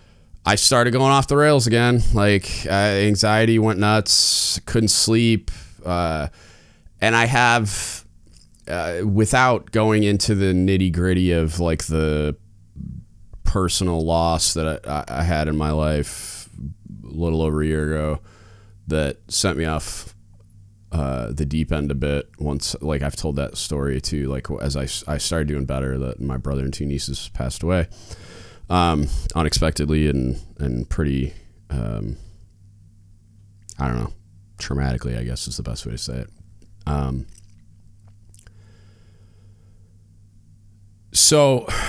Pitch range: 75-100 Hz